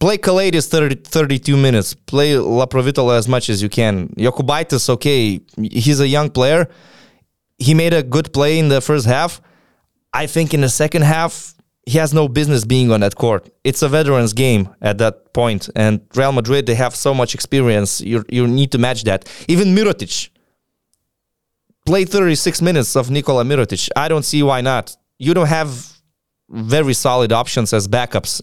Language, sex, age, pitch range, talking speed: English, male, 20-39, 125-165 Hz, 175 wpm